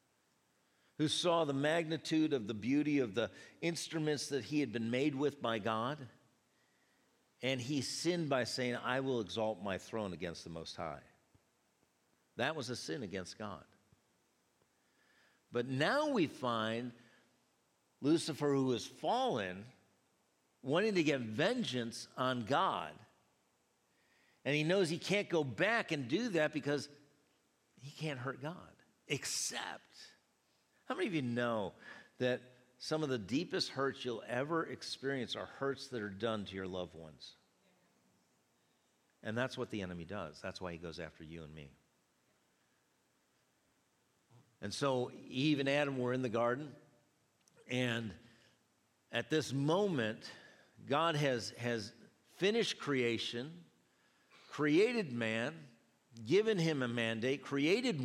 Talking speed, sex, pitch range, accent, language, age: 135 wpm, male, 115-150 Hz, American, English, 50-69